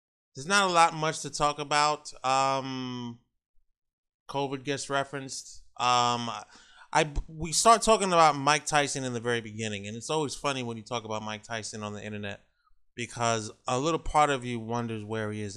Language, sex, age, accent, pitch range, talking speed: English, male, 20-39, American, 110-135 Hz, 185 wpm